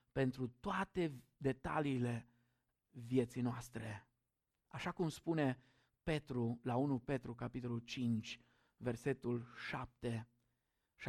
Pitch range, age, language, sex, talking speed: 125-180 Hz, 50-69, Romanian, male, 90 wpm